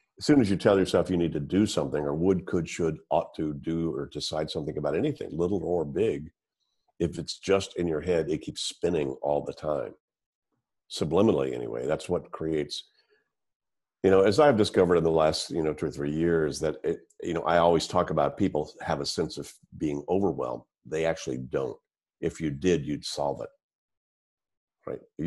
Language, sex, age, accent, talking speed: English, male, 50-69, American, 195 wpm